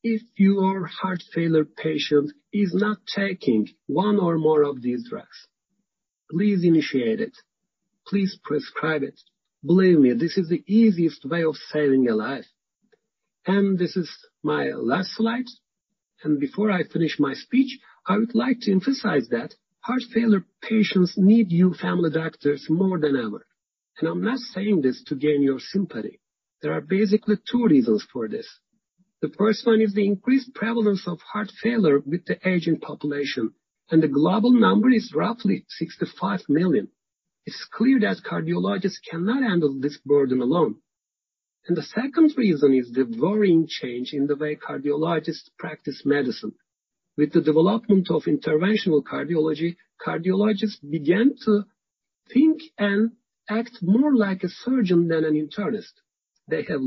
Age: 50-69